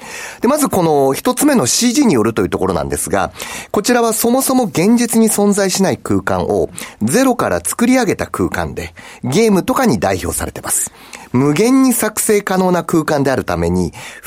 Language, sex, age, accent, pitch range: Japanese, male, 40-59, native, 145-235 Hz